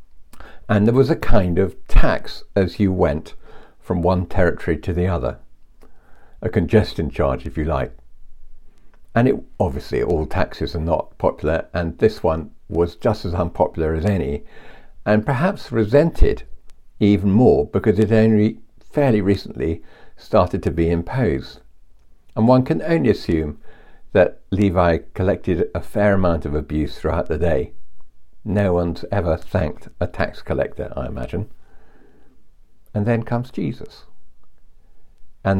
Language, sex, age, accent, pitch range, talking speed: English, male, 60-79, British, 85-110 Hz, 140 wpm